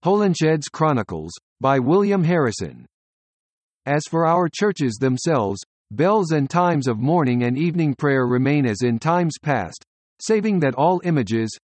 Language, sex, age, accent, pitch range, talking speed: English, male, 50-69, American, 125-170 Hz, 140 wpm